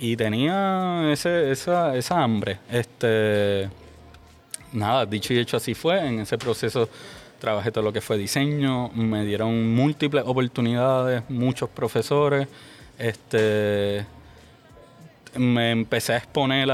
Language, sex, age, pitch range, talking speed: English, male, 20-39, 110-125 Hz, 110 wpm